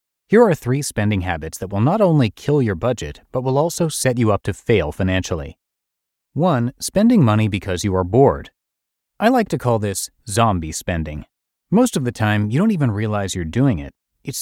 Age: 30-49